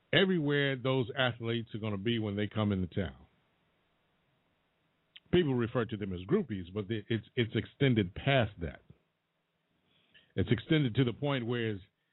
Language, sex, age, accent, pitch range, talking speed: English, male, 50-69, American, 95-135 Hz, 150 wpm